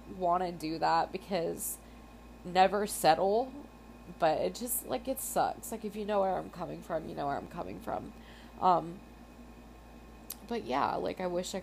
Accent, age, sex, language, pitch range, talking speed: American, 20-39, female, English, 155-195 Hz, 175 wpm